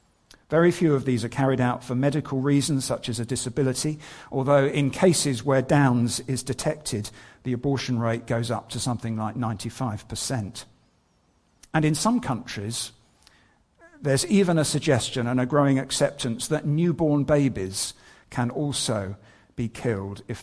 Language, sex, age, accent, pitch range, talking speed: English, male, 50-69, British, 115-150 Hz, 145 wpm